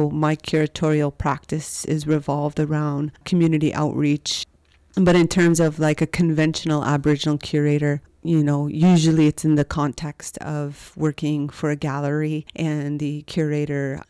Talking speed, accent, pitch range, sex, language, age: 135 wpm, American, 150-160 Hz, female, English, 30-49